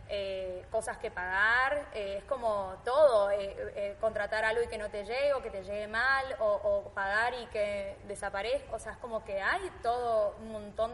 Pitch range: 205-265 Hz